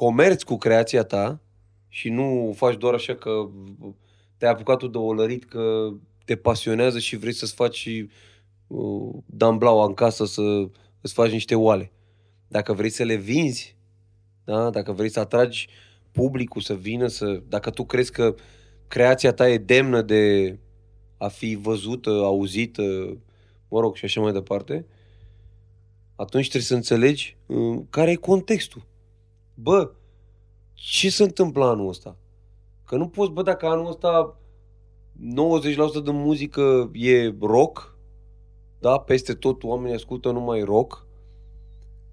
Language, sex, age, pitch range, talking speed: Romanian, male, 20-39, 105-130 Hz, 140 wpm